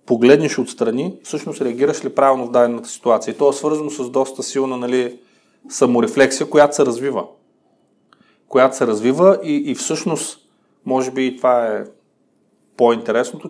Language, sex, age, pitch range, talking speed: Bulgarian, male, 30-49, 125-145 Hz, 145 wpm